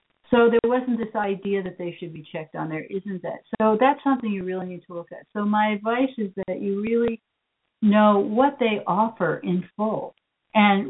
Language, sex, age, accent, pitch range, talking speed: English, female, 60-79, American, 175-220 Hz, 205 wpm